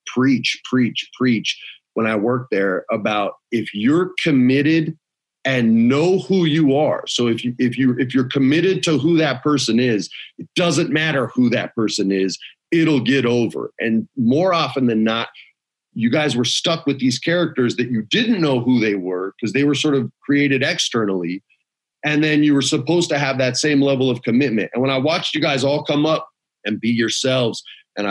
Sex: male